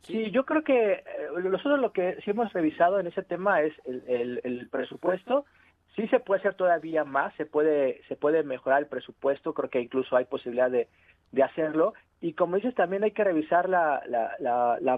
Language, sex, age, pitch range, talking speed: Spanish, male, 40-59, 135-185 Hz, 200 wpm